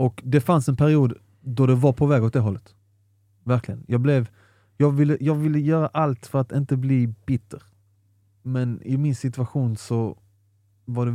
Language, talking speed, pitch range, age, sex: Swedish, 185 wpm, 105-125 Hz, 30-49, male